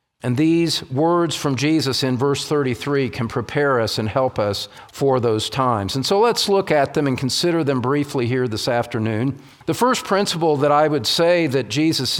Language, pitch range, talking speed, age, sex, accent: English, 130-180 Hz, 190 wpm, 50-69, male, American